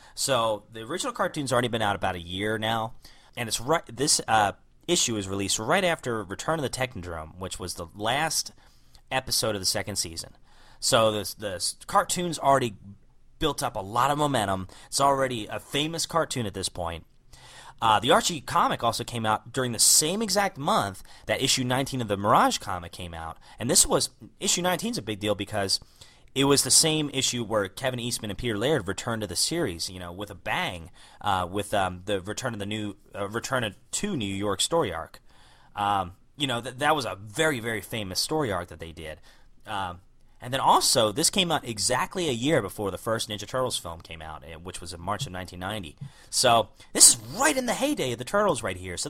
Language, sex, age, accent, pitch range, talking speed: English, male, 30-49, American, 95-130 Hz, 210 wpm